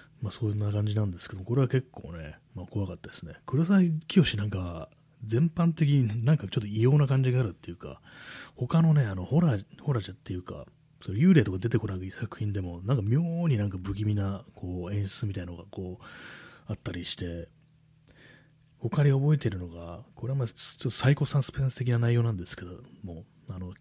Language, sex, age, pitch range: Japanese, male, 30-49, 95-145 Hz